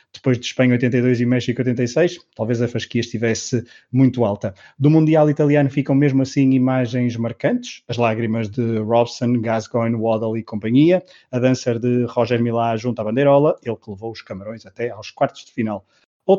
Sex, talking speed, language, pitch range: male, 175 wpm, Portuguese, 115-135 Hz